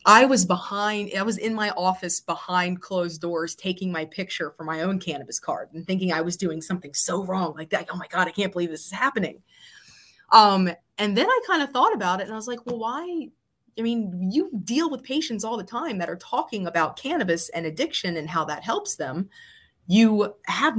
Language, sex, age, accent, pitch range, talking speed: English, female, 30-49, American, 170-225 Hz, 220 wpm